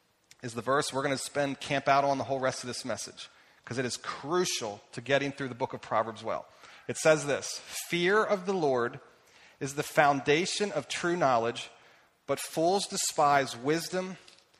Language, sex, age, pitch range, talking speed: English, male, 30-49, 140-185 Hz, 185 wpm